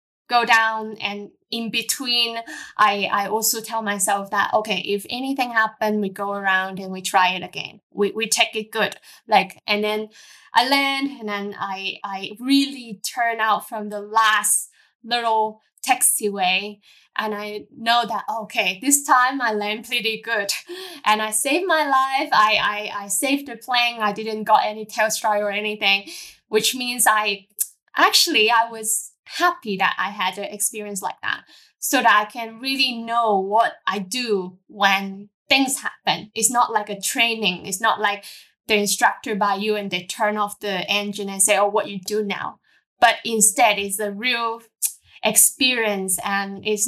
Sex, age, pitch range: female, 10-29, 200-230 Hz